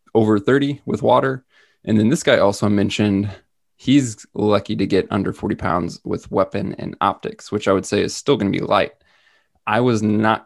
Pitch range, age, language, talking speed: 100-115 Hz, 20-39, English, 195 wpm